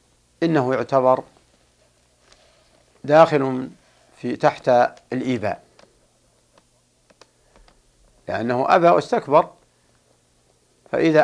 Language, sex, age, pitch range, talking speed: Arabic, male, 50-69, 100-140 Hz, 55 wpm